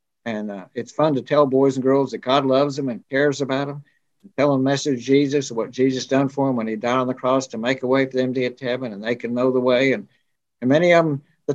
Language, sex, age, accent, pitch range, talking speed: English, male, 60-79, American, 130-145 Hz, 295 wpm